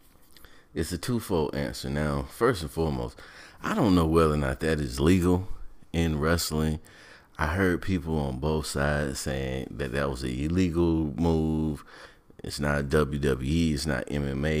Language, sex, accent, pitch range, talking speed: English, male, American, 70-85 Hz, 155 wpm